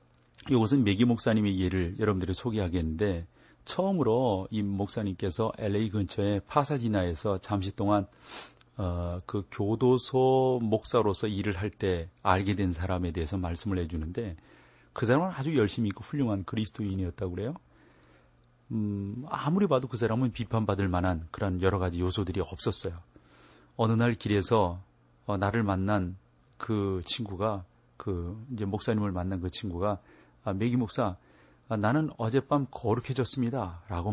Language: Korean